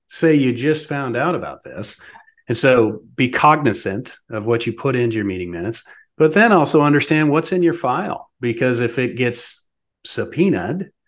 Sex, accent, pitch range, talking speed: male, American, 115-170 Hz, 175 wpm